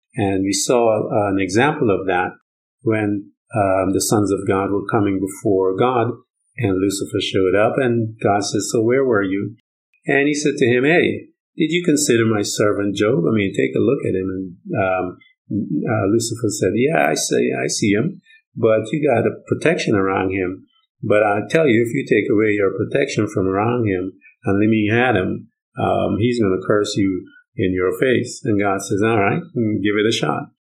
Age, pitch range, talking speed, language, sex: 50-69, 100-120 Hz, 200 wpm, English, male